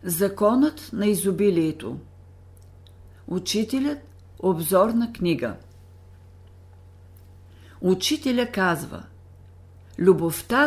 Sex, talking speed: female, 55 wpm